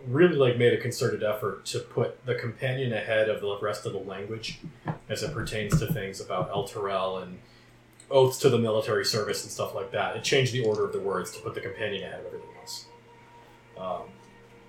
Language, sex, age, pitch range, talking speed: English, male, 30-49, 105-130 Hz, 205 wpm